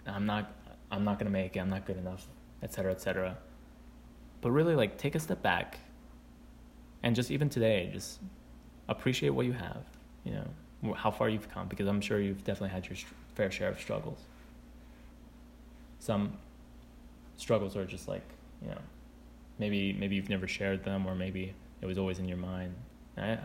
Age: 20-39